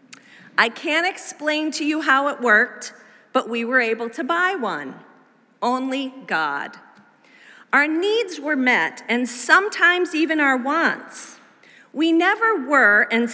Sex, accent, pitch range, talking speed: female, American, 215-300 Hz, 135 wpm